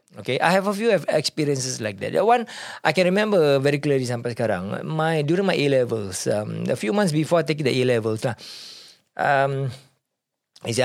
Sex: male